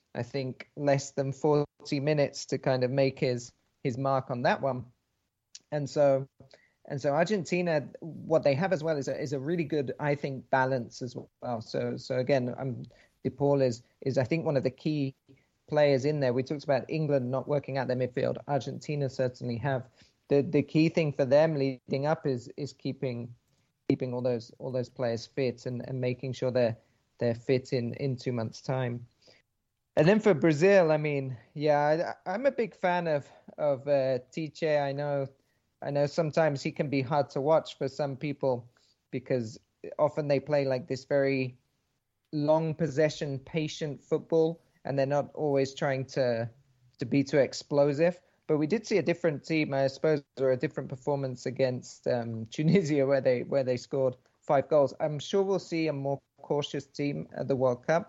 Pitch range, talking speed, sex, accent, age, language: 130-150 Hz, 185 wpm, male, British, 30-49, English